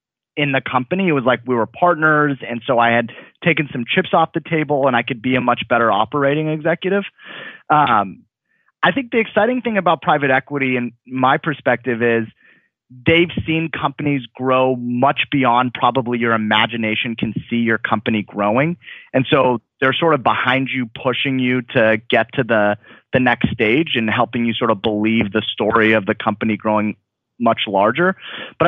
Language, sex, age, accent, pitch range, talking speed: English, male, 30-49, American, 120-165 Hz, 180 wpm